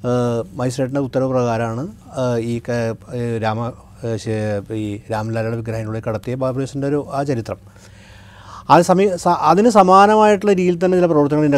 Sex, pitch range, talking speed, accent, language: male, 120-150 Hz, 110 wpm, native, Malayalam